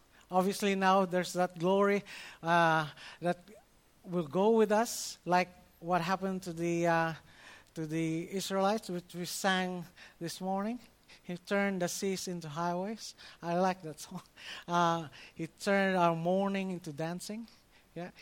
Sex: male